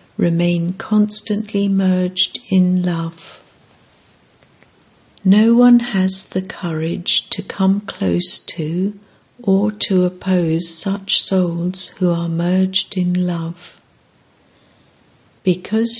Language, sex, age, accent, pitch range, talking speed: English, female, 60-79, British, 170-195 Hz, 95 wpm